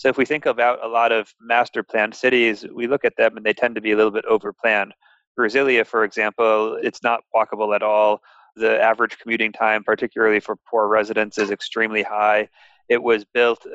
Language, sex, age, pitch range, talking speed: English, male, 30-49, 105-115 Hz, 195 wpm